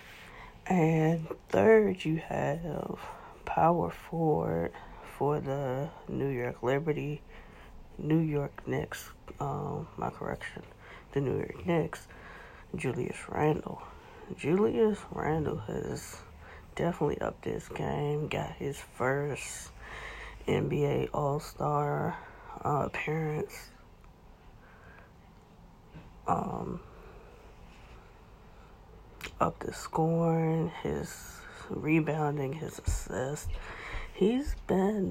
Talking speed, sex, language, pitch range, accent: 80 wpm, female, English, 130-165 Hz, American